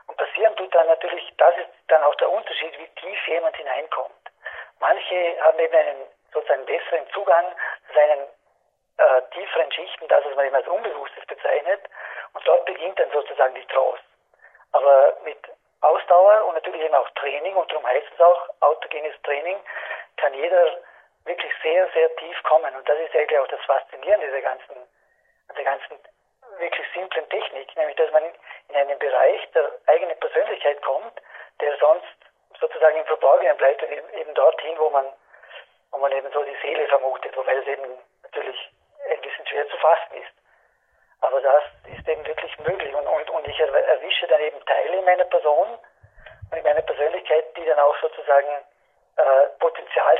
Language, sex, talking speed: German, male, 170 wpm